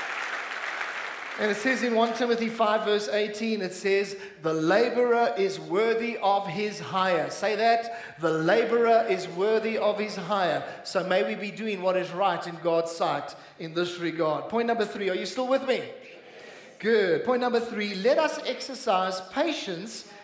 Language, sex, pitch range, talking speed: English, male, 195-240 Hz, 170 wpm